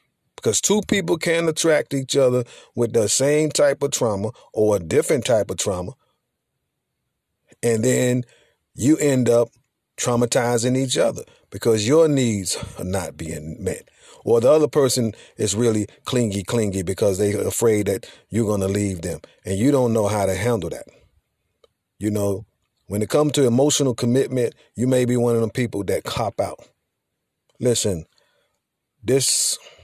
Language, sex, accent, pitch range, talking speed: English, male, American, 105-130 Hz, 160 wpm